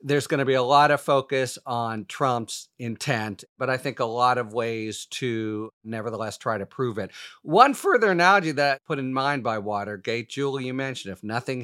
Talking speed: 195 wpm